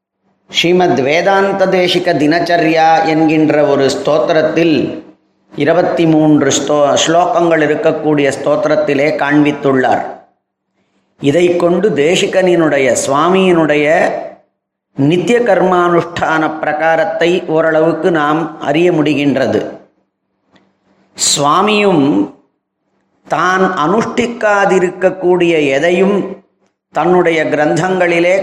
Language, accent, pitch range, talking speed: Tamil, native, 155-185 Hz, 65 wpm